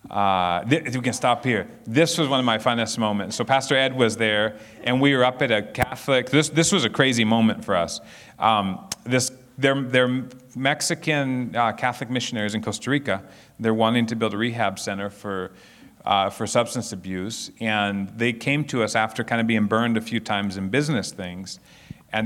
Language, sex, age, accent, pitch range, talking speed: English, male, 40-59, American, 110-145 Hz, 200 wpm